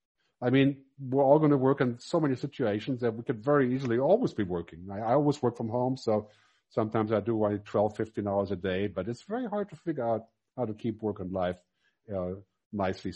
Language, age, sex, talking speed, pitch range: English, 50-69, male, 225 wpm, 100-140 Hz